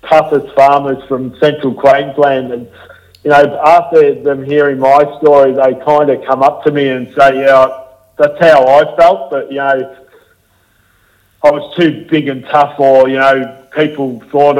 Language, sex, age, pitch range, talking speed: English, male, 50-69, 130-145 Hz, 170 wpm